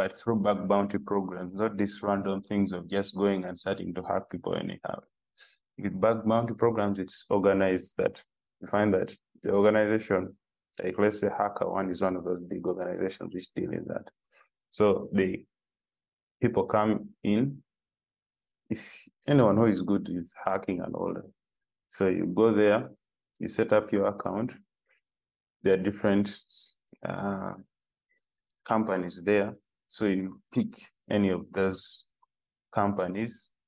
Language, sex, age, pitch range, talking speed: English, male, 20-39, 95-105 Hz, 145 wpm